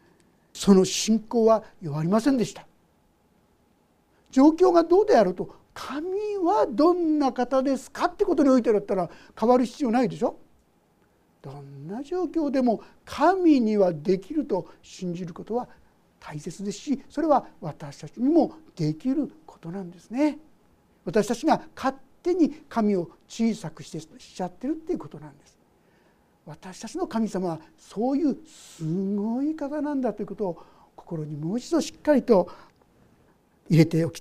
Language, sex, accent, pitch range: Japanese, male, native, 195-295 Hz